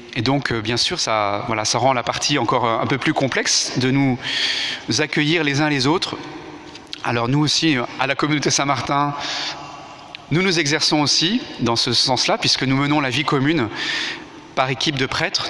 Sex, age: male, 30-49